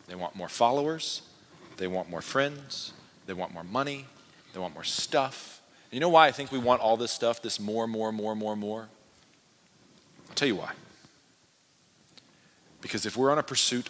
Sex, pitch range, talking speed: male, 95-125 Hz, 180 wpm